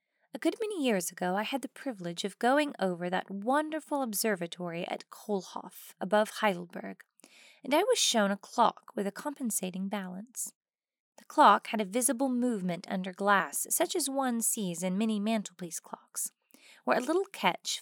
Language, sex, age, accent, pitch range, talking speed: English, female, 20-39, American, 195-260 Hz, 165 wpm